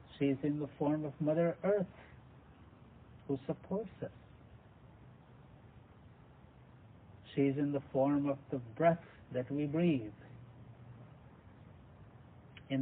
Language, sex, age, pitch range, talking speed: English, male, 60-79, 115-140 Hz, 110 wpm